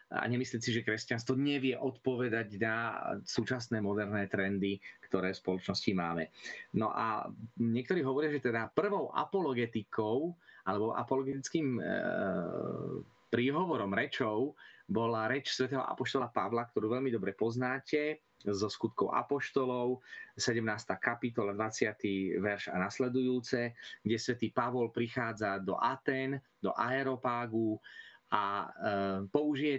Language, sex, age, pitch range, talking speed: Slovak, male, 30-49, 115-135 Hz, 115 wpm